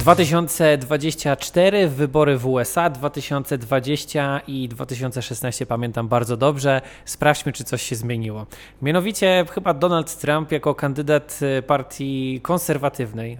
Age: 20-39